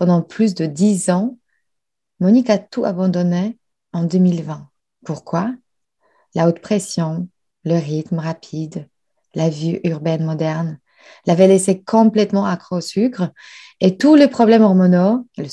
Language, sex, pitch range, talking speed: French, female, 170-210 Hz, 130 wpm